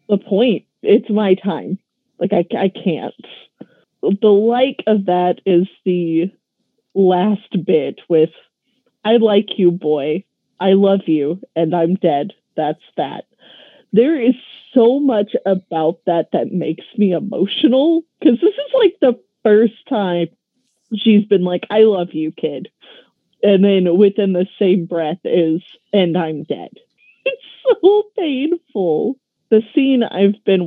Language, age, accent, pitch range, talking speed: English, 30-49, American, 175-230 Hz, 140 wpm